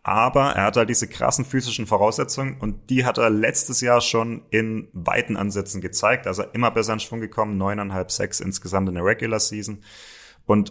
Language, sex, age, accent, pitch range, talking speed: German, male, 30-49, German, 100-115 Hz, 185 wpm